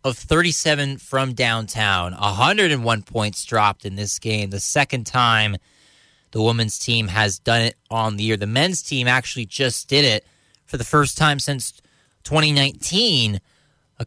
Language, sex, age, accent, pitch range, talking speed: English, male, 20-39, American, 105-140 Hz, 155 wpm